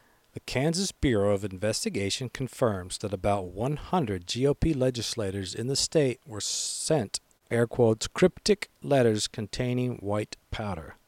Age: 50-69